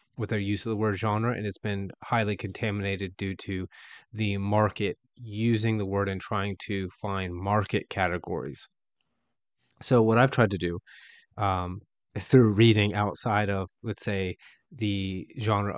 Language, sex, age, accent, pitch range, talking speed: English, male, 30-49, American, 95-110 Hz, 150 wpm